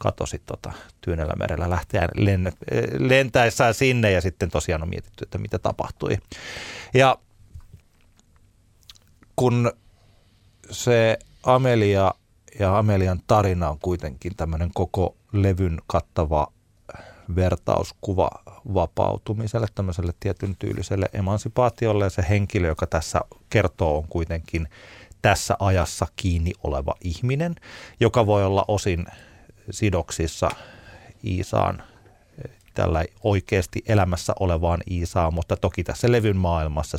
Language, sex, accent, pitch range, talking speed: Finnish, male, native, 90-110 Hz, 100 wpm